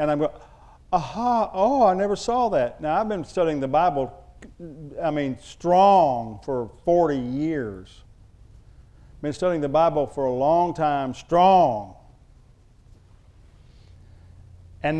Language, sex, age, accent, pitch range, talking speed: English, male, 50-69, American, 150-215 Hz, 130 wpm